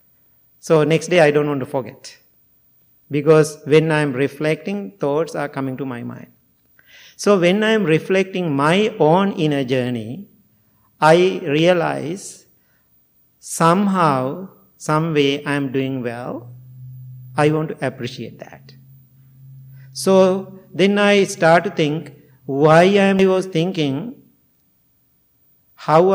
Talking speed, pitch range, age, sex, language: 120 wpm, 135-180 Hz, 50-69, male, English